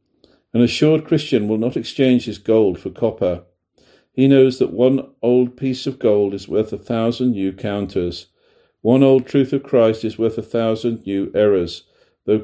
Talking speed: 175 wpm